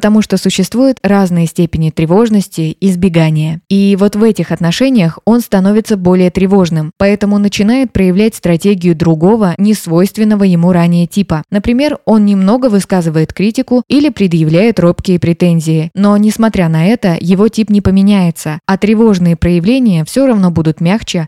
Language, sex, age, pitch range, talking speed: Russian, female, 20-39, 170-215 Hz, 140 wpm